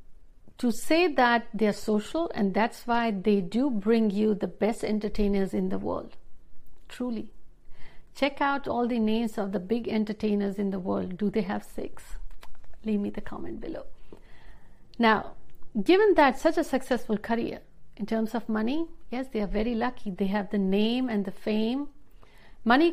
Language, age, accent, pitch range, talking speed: Hindi, 60-79, native, 205-245 Hz, 170 wpm